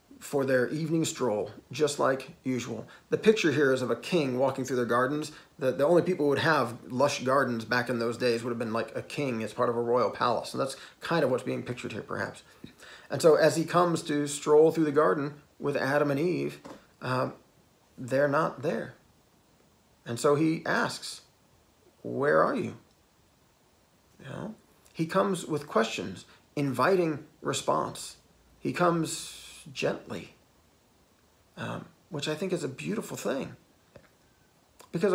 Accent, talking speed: American, 165 wpm